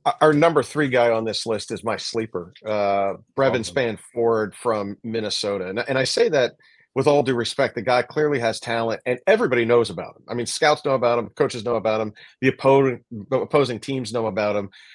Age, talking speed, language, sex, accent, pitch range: 40-59, 210 wpm, English, male, American, 110-130 Hz